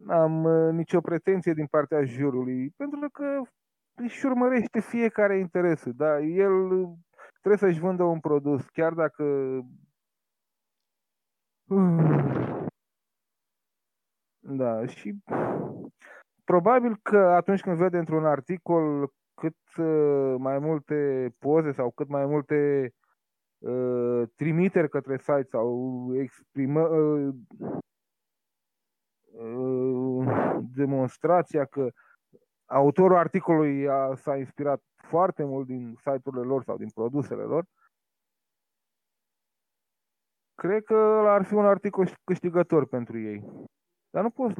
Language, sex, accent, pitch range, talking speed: Romanian, male, native, 135-175 Hz, 100 wpm